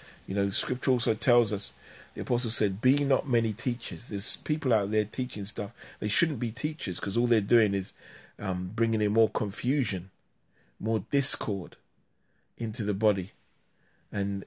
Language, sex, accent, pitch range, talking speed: English, male, British, 100-120 Hz, 160 wpm